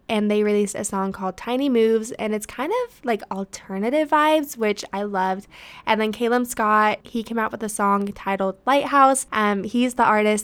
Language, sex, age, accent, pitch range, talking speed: English, female, 10-29, American, 200-245 Hz, 195 wpm